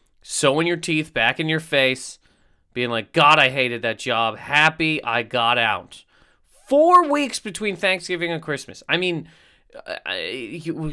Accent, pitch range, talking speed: American, 135-190 Hz, 155 wpm